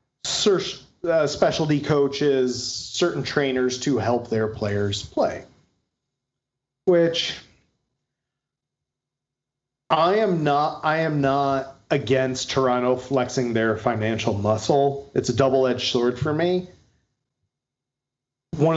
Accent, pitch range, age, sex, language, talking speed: American, 120-145 Hz, 40-59, male, English, 100 wpm